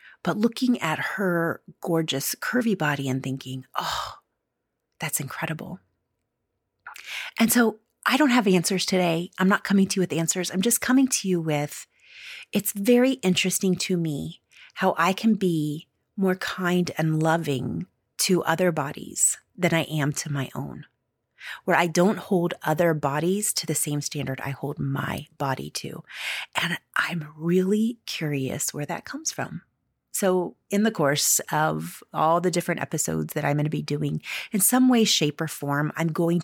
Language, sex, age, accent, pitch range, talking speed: English, female, 30-49, American, 145-195 Hz, 165 wpm